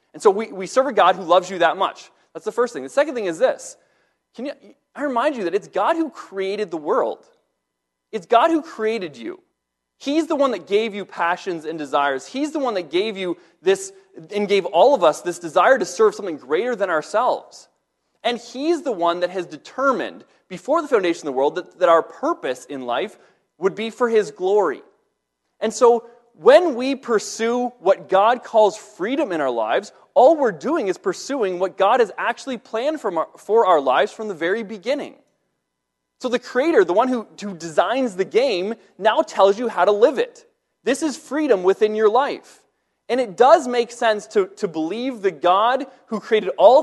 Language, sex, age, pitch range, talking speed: English, male, 30-49, 185-270 Hz, 200 wpm